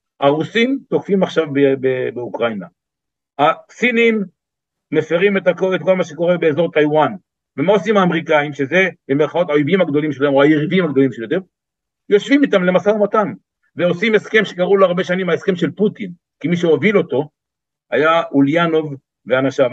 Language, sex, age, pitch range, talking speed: Hebrew, male, 60-79, 140-185 Hz, 140 wpm